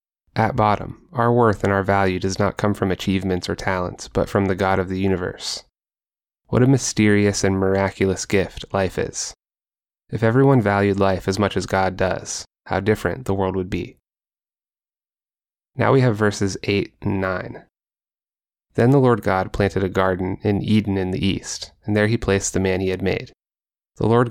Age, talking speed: 20-39, 185 wpm